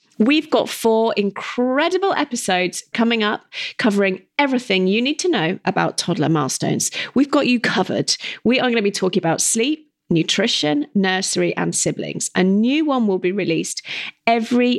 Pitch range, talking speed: 180-240 Hz, 160 wpm